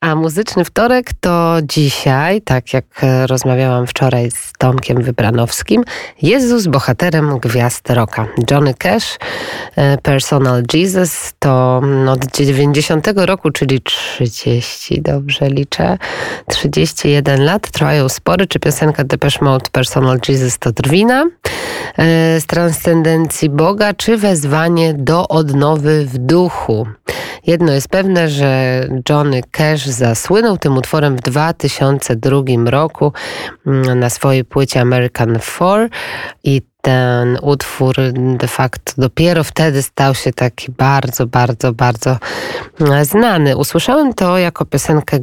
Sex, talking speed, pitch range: female, 115 wpm, 130-160 Hz